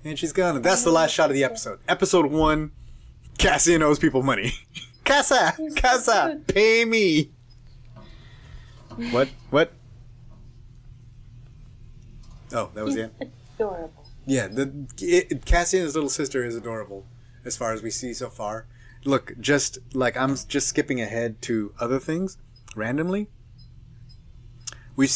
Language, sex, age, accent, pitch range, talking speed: English, male, 30-49, American, 120-160 Hz, 135 wpm